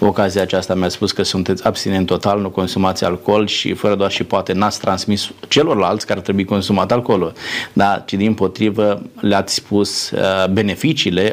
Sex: male